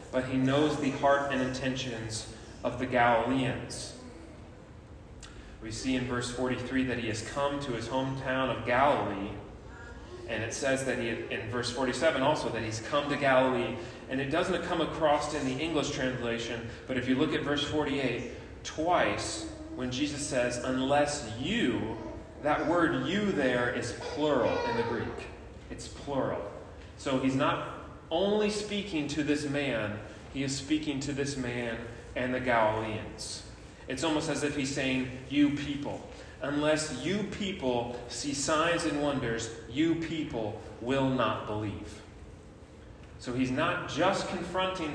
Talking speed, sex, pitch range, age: 150 wpm, male, 115-145 Hz, 30-49